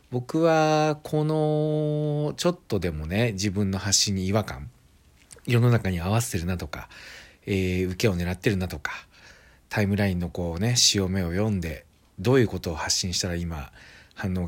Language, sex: Japanese, male